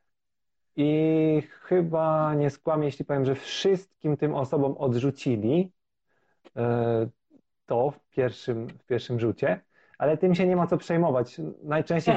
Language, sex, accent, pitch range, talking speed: Polish, male, native, 125-155 Hz, 125 wpm